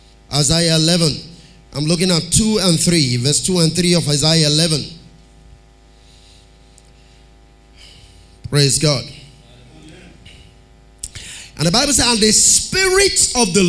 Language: English